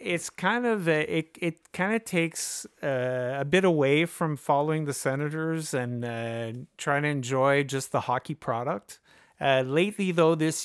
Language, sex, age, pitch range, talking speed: English, male, 30-49, 125-150 Hz, 165 wpm